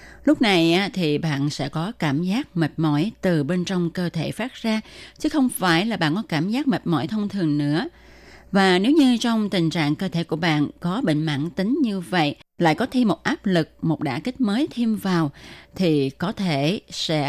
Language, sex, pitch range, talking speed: Vietnamese, female, 155-205 Hz, 215 wpm